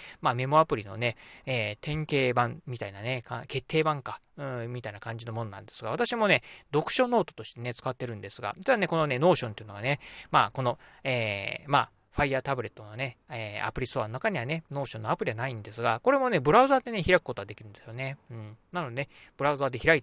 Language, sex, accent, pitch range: Japanese, male, native, 115-165 Hz